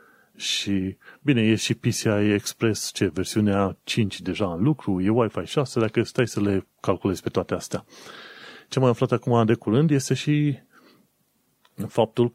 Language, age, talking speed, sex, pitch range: Romanian, 30-49, 160 wpm, male, 100-120 Hz